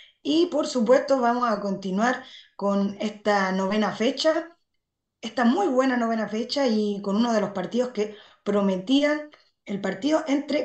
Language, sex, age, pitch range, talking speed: Spanish, female, 20-39, 195-245 Hz, 145 wpm